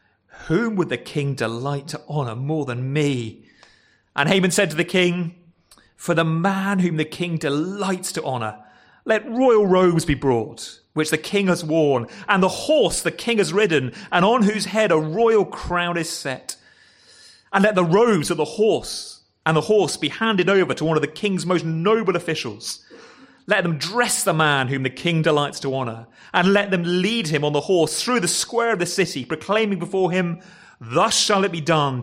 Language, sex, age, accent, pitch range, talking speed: English, male, 30-49, British, 125-190 Hz, 195 wpm